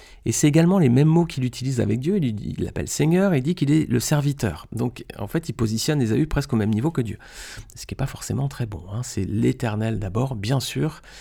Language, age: French, 40-59